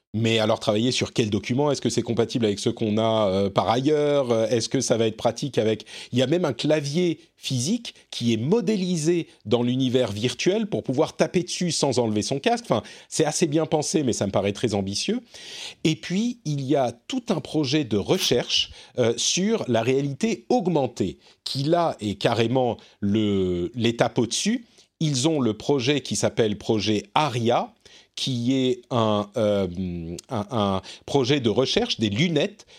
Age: 40-59